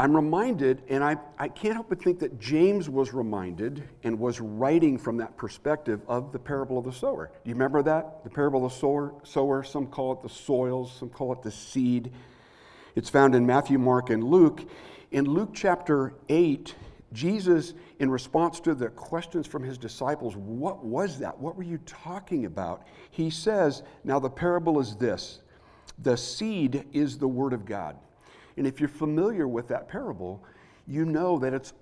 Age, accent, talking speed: 60-79, American, 185 wpm